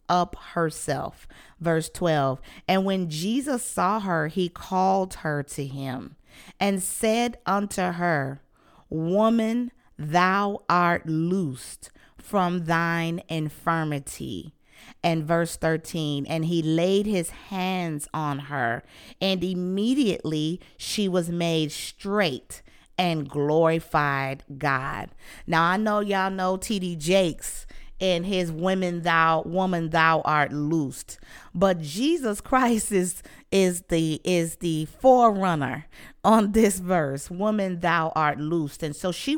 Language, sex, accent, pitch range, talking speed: English, female, American, 155-185 Hz, 120 wpm